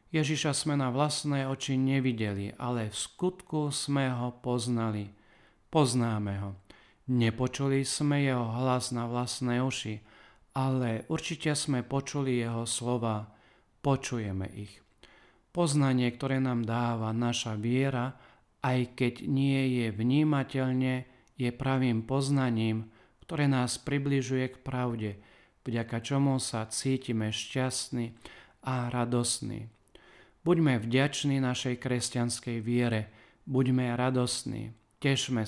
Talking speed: 105 wpm